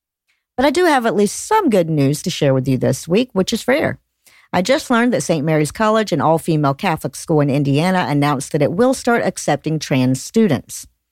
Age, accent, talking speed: 50-69, American, 210 wpm